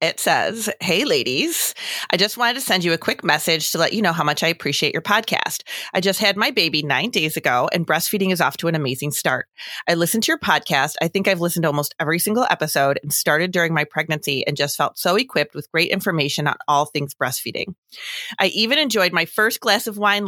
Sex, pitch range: female, 150-200 Hz